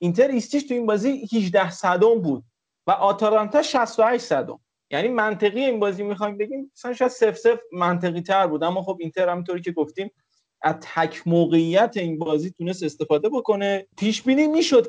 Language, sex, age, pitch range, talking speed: Persian, male, 30-49, 180-245 Hz, 175 wpm